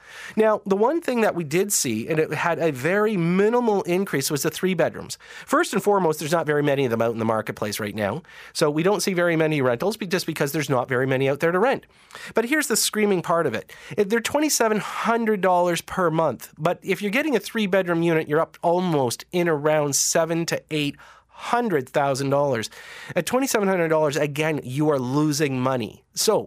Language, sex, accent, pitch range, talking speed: English, male, American, 150-210 Hz, 200 wpm